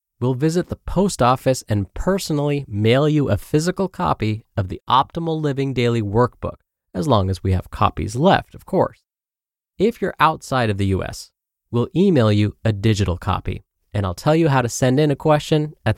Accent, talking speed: American, 190 wpm